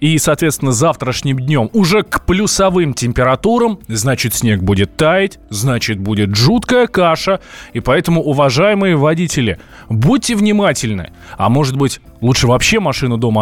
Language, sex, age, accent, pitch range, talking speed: Russian, male, 20-39, native, 125-180 Hz, 130 wpm